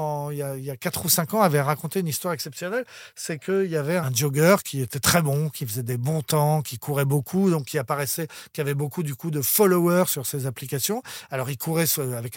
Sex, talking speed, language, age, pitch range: male, 230 wpm, French, 40-59, 145-185 Hz